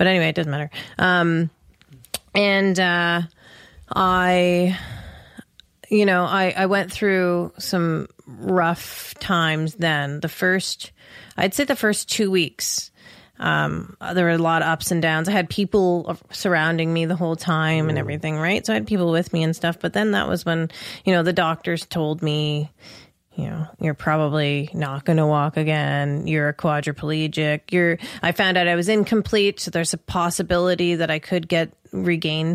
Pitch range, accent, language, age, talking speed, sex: 160-185 Hz, American, English, 30-49, 175 wpm, female